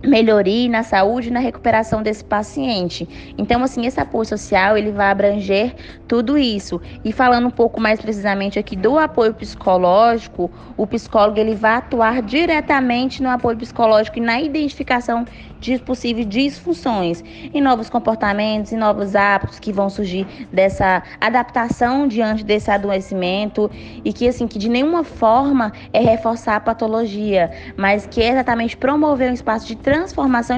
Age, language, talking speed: 20-39, Portuguese, 150 wpm